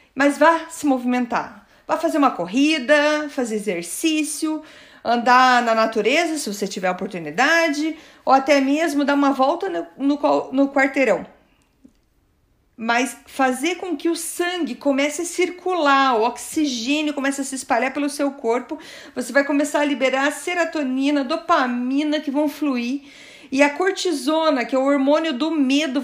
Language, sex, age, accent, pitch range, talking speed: Portuguese, female, 50-69, Brazilian, 265-315 Hz, 155 wpm